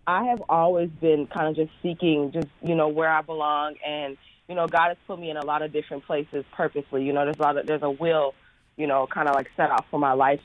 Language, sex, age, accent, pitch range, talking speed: English, female, 20-39, American, 150-175 Hz, 270 wpm